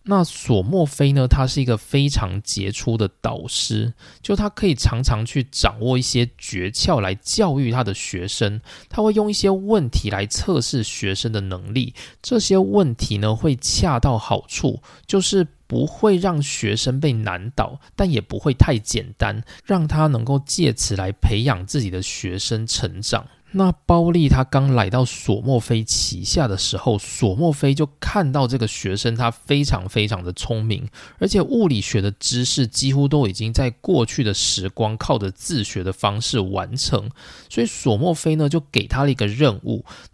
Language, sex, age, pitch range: Chinese, male, 20-39, 105-145 Hz